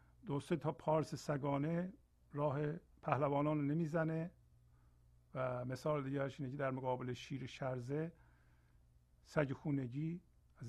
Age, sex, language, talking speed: 50-69, male, Persian, 100 wpm